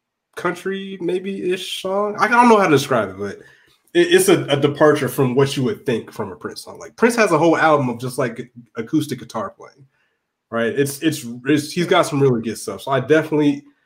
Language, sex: English, male